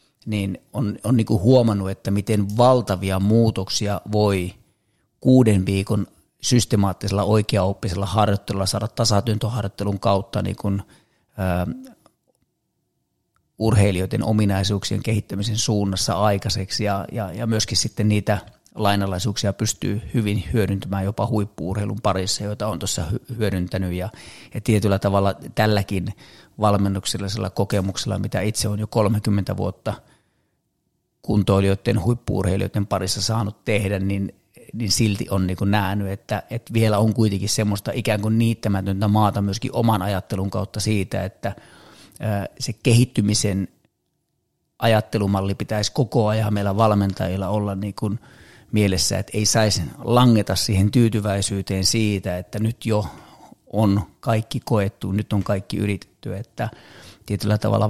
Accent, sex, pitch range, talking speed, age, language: native, male, 100-110 Hz, 120 wpm, 30-49, Finnish